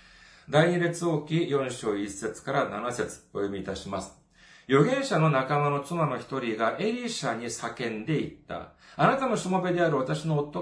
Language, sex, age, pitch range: Japanese, male, 40-59, 145-210 Hz